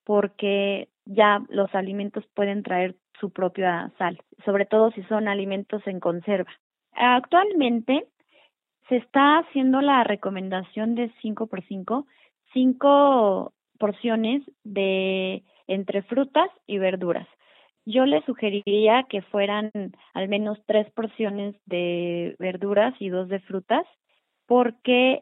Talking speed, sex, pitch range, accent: 115 wpm, female, 190-230 Hz, Mexican